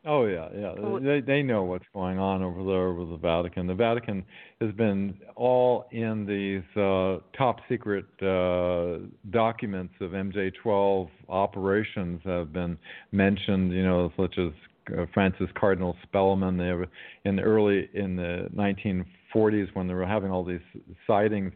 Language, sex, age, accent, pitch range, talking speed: English, male, 50-69, American, 95-110 Hz, 150 wpm